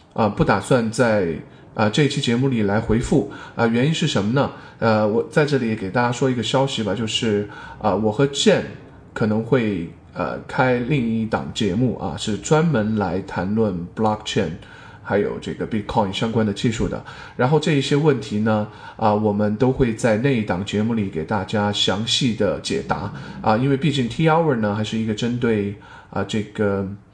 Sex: male